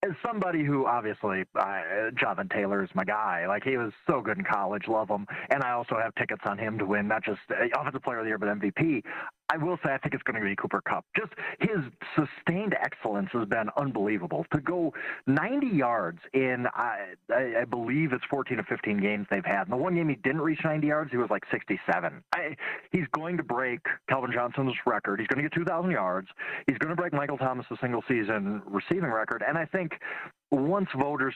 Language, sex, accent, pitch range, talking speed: English, male, American, 110-160 Hz, 215 wpm